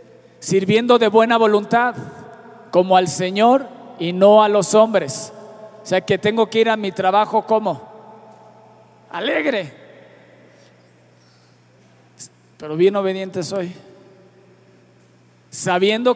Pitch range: 155-220 Hz